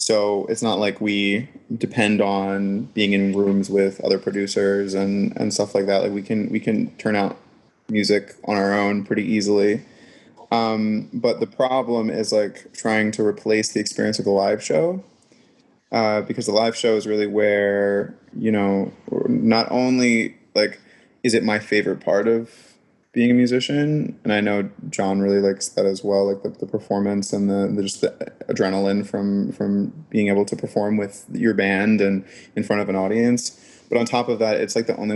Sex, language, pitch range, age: male, English, 100-110 Hz, 20-39